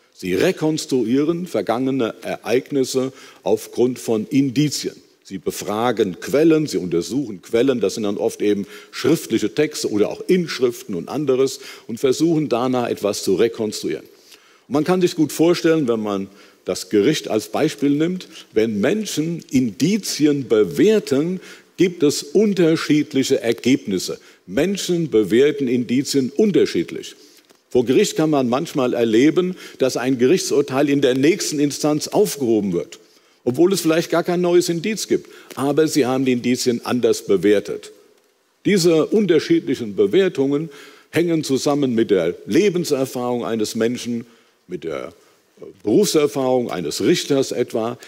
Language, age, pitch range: German, 50-69, 130-205 Hz